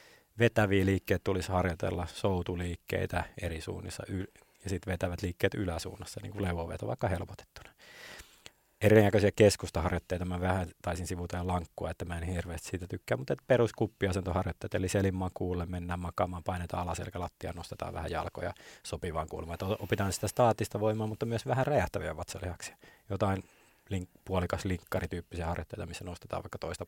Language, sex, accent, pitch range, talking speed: Finnish, male, native, 90-110 Hz, 140 wpm